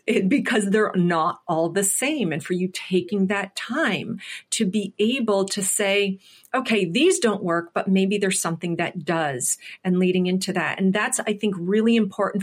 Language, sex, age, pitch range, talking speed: English, female, 40-59, 185-210 Hz, 180 wpm